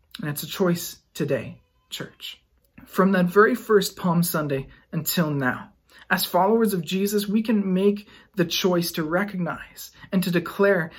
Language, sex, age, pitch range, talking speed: English, male, 40-59, 150-190 Hz, 155 wpm